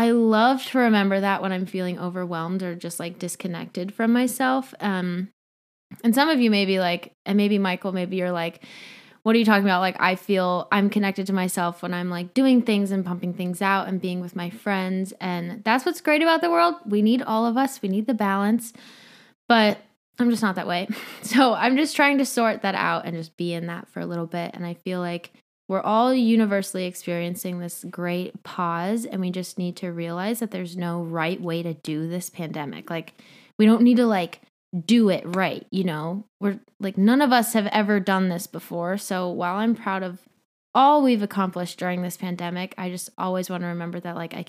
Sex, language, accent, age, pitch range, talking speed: female, English, American, 20-39, 175-225 Hz, 215 wpm